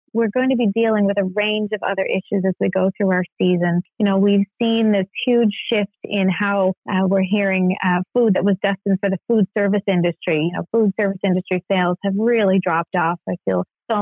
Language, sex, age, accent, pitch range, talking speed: English, female, 30-49, American, 185-210 Hz, 225 wpm